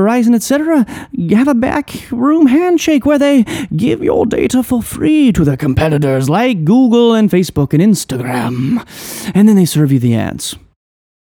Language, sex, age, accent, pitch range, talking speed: English, male, 30-49, American, 125-190 Hz, 160 wpm